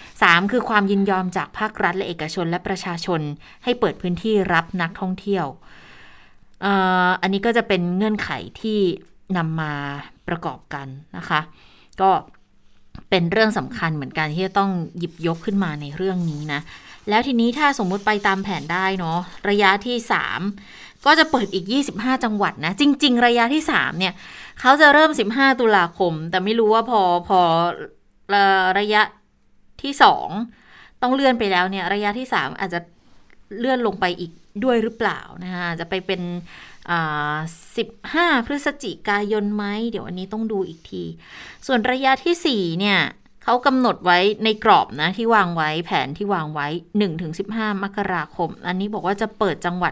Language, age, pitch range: Thai, 20-39, 175-220 Hz